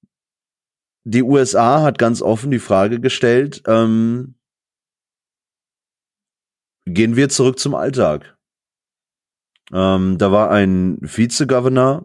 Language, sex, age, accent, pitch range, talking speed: German, male, 30-49, German, 95-120 Hz, 95 wpm